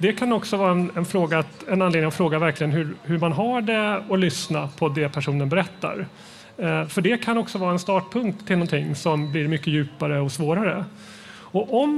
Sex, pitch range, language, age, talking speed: male, 160-205 Hz, Swedish, 30-49, 190 wpm